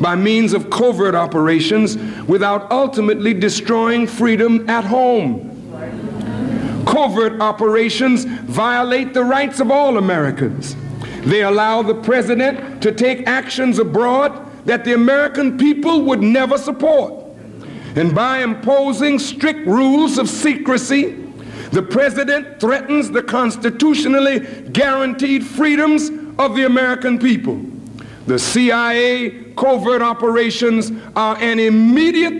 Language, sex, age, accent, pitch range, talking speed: English, male, 60-79, American, 220-270 Hz, 110 wpm